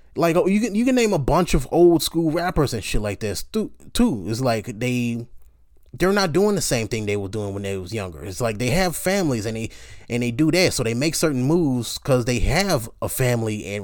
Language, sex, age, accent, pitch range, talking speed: English, male, 20-39, American, 105-160 Hz, 245 wpm